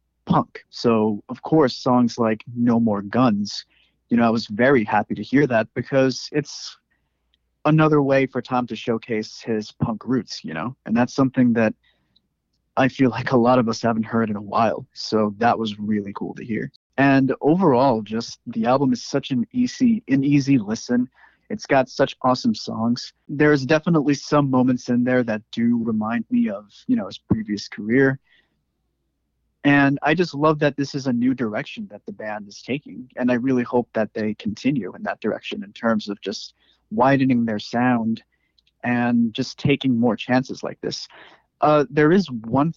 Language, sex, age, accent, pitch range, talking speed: English, male, 30-49, American, 115-145 Hz, 180 wpm